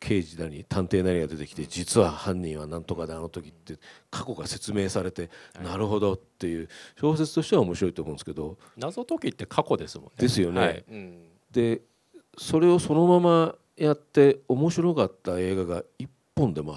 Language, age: Japanese, 40-59